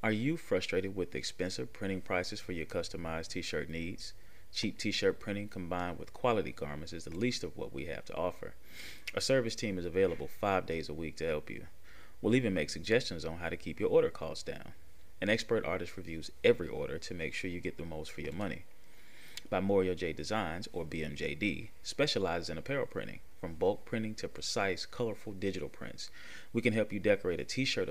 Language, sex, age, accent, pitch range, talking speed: English, male, 30-49, American, 85-110 Hz, 200 wpm